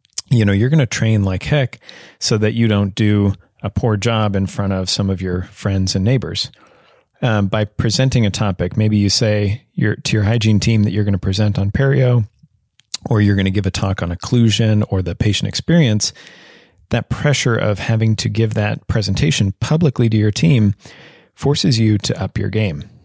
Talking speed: 195 wpm